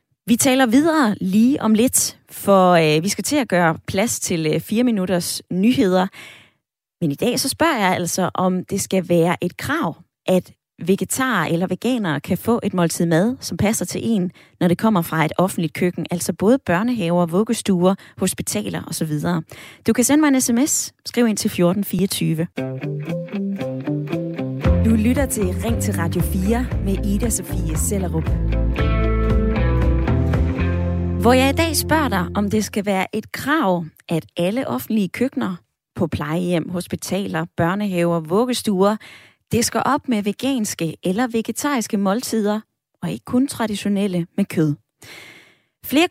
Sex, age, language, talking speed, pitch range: female, 20-39, Danish, 150 wpm, 165-225 Hz